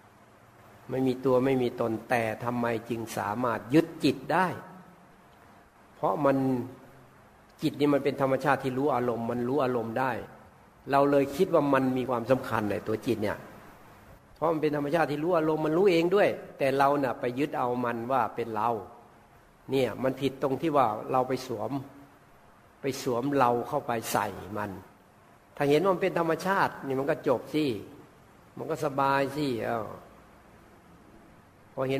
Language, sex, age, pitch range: Thai, male, 60-79, 120-140 Hz